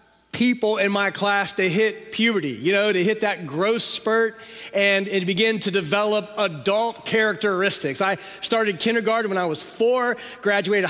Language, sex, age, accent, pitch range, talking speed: English, male, 40-59, American, 205-240 Hz, 160 wpm